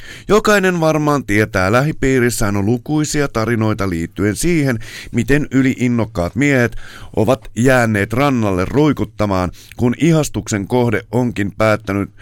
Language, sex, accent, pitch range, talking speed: Finnish, male, native, 105-135 Hz, 105 wpm